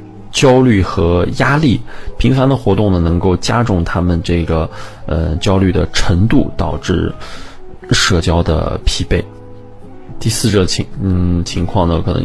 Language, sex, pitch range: Chinese, male, 90-115 Hz